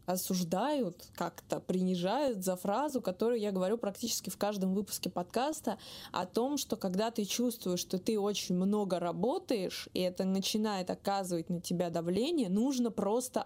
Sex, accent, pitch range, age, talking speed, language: female, native, 185-235 Hz, 20-39, 145 wpm, Russian